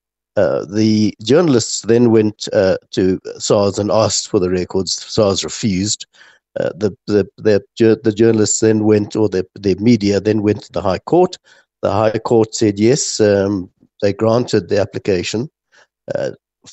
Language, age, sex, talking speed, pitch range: English, 60-79, male, 155 wpm, 95-115 Hz